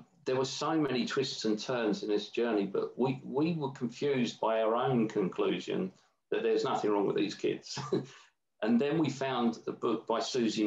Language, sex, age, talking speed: English, male, 40-59, 190 wpm